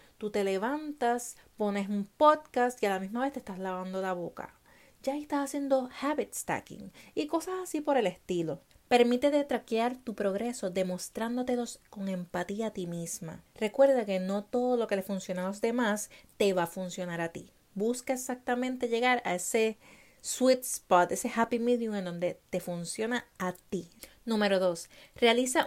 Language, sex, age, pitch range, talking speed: Spanish, female, 30-49, 195-255 Hz, 175 wpm